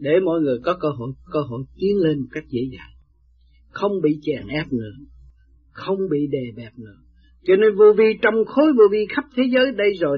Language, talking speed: Vietnamese, 220 wpm